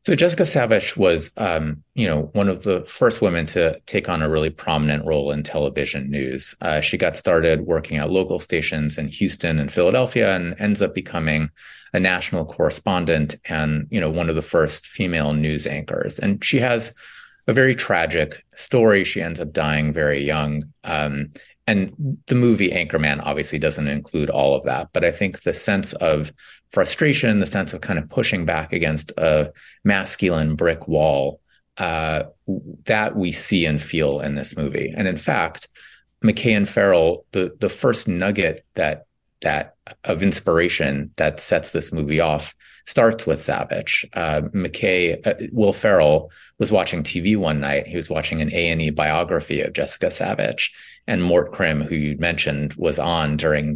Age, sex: 30-49, male